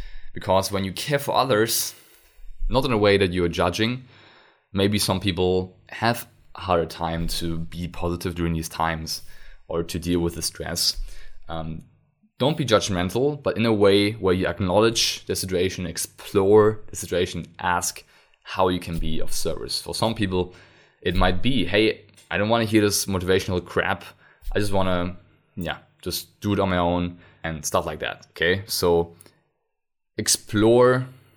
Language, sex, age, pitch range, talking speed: English, male, 20-39, 85-110 Hz, 165 wpm